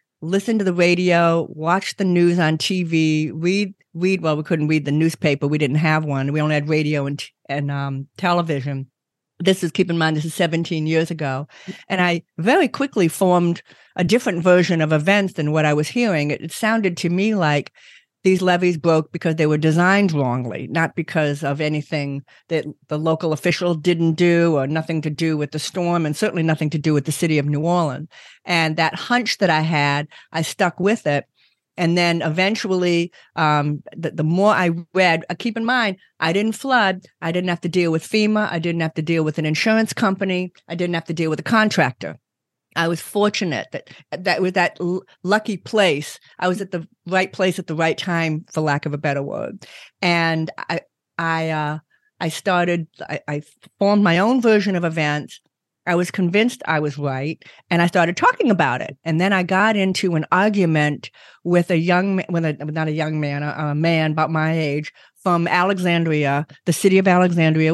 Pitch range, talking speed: 155-185 Hz, 200 wpm